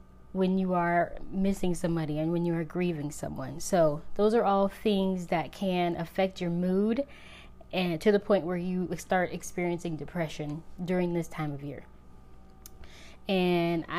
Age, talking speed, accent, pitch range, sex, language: 20-39, 155 wpm, American, 170-205 Hz, female, English